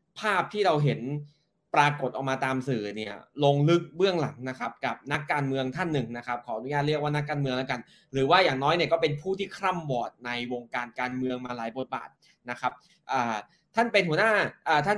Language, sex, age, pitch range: Thai, male, 20-39, 125-155 Hz